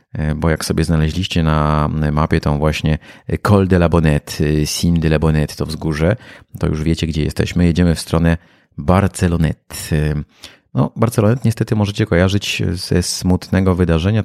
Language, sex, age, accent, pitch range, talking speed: Polish, male, 30-49, native, 75-90 Hz, 145 wpm